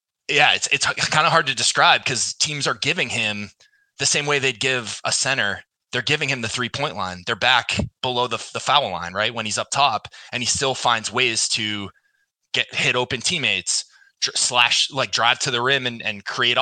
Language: English